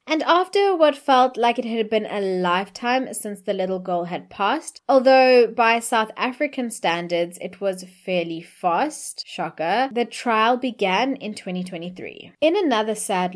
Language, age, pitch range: English, 20-39, 185-240 Hz